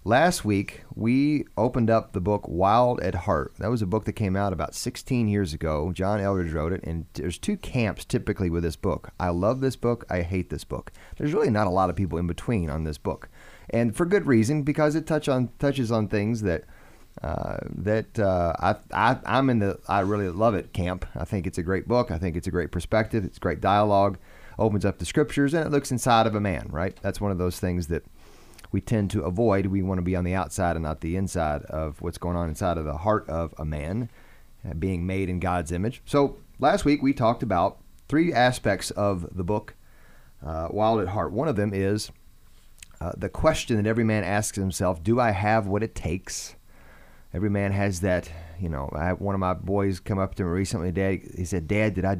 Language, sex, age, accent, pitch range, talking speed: English, male, 30-49, American, 90-110 Hz, 230 wpm